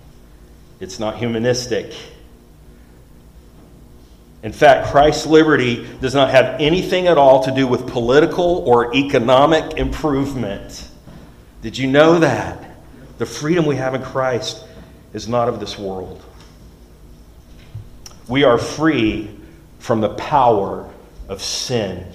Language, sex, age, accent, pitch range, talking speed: English, male, 40-59, American, 105-135 Hz, 115 wpm